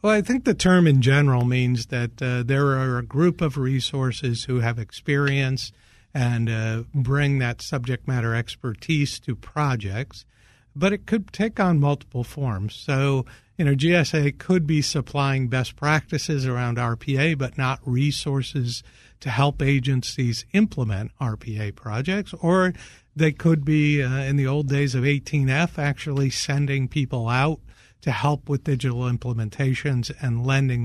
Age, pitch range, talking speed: 50-69, 120-145 Hz, 150 wpm